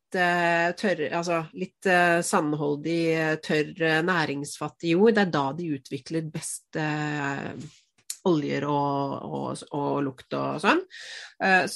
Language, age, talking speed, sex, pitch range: English, 30-49, 100 wpm, female, 150-195 Hz